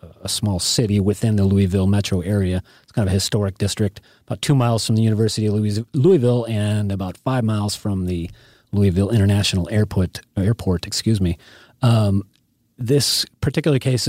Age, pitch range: 30-49, 95-115 Hz